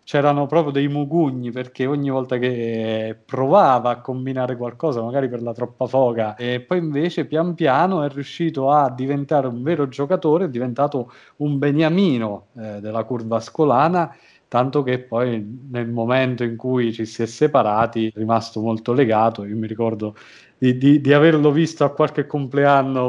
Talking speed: 165 wpm